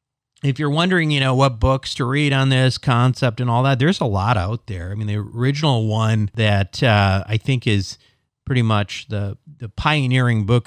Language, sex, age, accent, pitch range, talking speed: English, male, 50-69, American, 105-135 Hz, 200 wpm